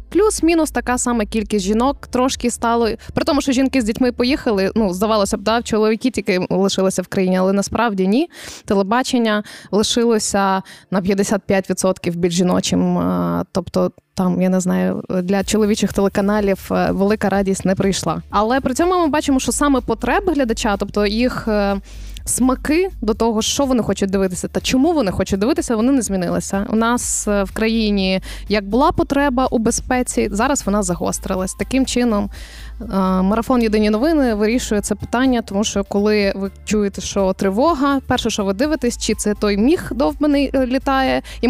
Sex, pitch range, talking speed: female, 195-250 Hz, 160 wpm